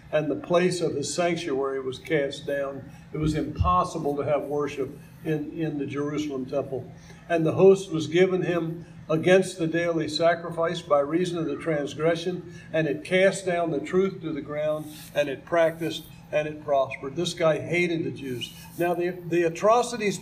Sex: male